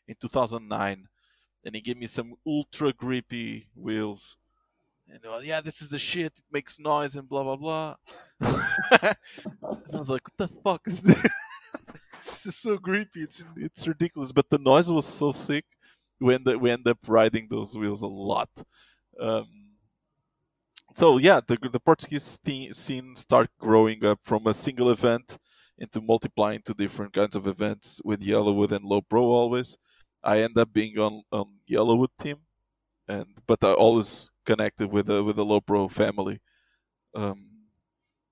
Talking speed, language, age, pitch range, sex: 165 wpm, English, 20-39, 105-145 Hz, male